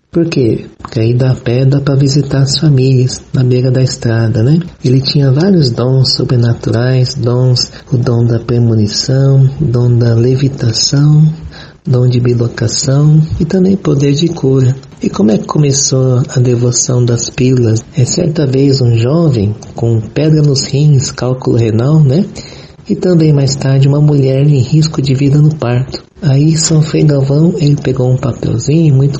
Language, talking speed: Portuguese, 160 wpm